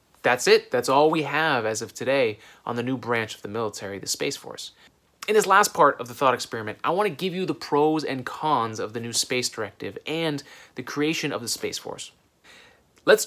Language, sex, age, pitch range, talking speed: English, male, 30-49, 120-155 Hz, 220 wpm